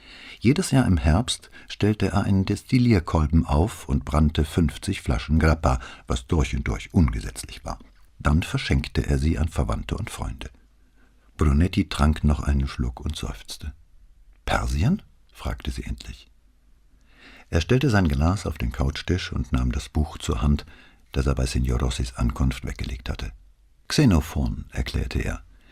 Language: English